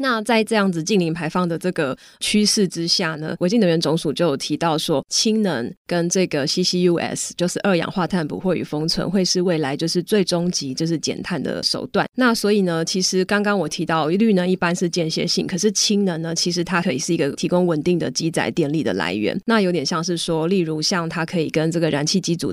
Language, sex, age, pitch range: Chinese, female, 20-39, 160-185 Hz